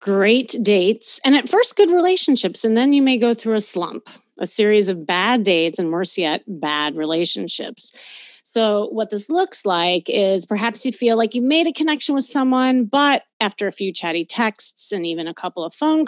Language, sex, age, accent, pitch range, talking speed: English, female, 30-49, American, 190-260 Hz, 200 wpm